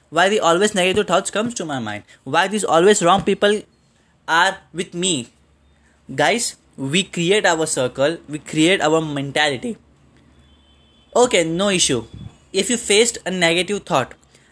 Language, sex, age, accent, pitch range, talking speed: Hindi, male, 10-29, native, 150-205 Hz, 145 wpm